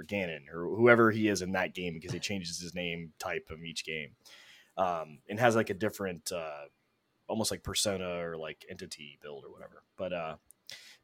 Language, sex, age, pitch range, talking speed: English, male, 20-39, 90-115 Hz, 190 wpm